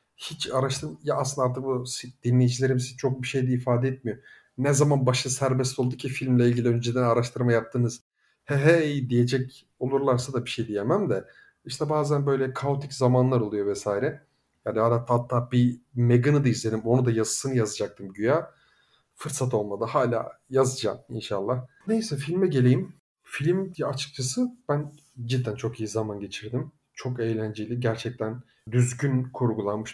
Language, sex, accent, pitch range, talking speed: Turkish, male, native, 120-150 Hz, 150 wpm